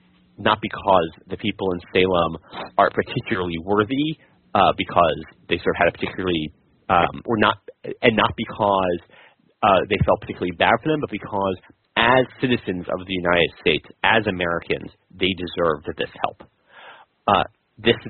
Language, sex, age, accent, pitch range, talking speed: English, male, 30-49, American, 95-110 Hz, 155 wpm